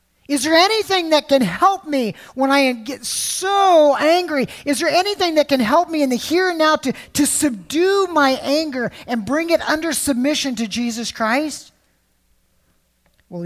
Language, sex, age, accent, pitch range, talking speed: English, male, 40-59, American, 195-270 Hz, 170 wpm